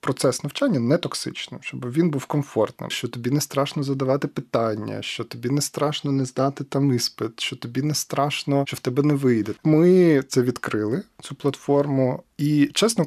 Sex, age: male, 20-39